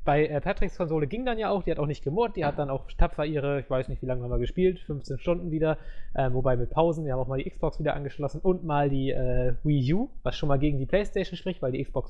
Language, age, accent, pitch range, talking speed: English, 20-39, German, 135-170 Hz, 285 wpm